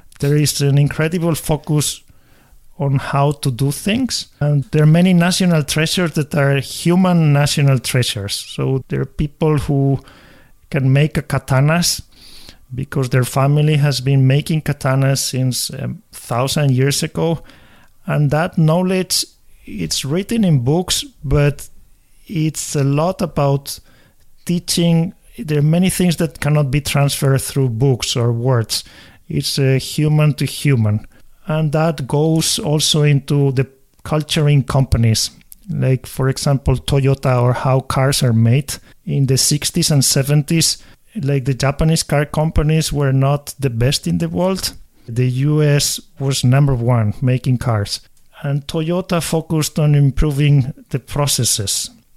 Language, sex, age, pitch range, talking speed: English, male, 50-69, 130-155 Hz, 135 wpm